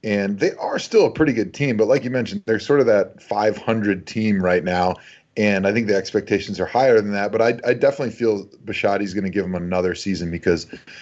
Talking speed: 230 wpm